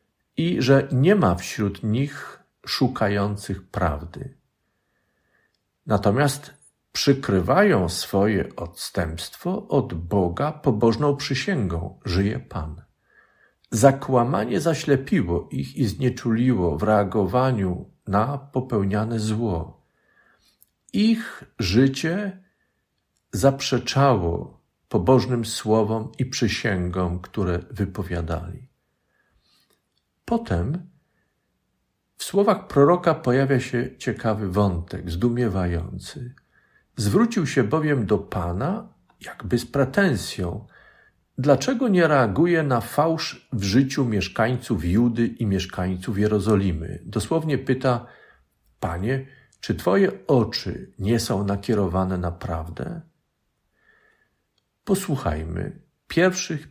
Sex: male